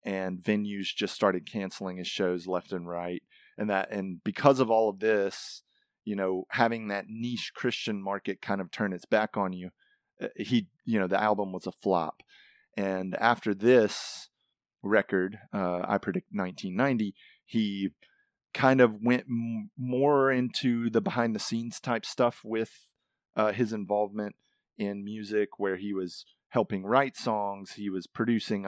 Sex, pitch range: male, 95-115 Hz